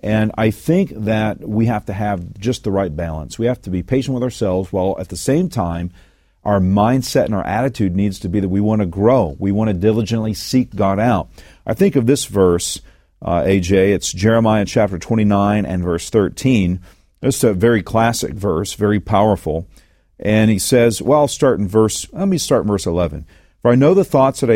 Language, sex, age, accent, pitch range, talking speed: English, male, 50-69, American, 95-125 Hz, 210 wpm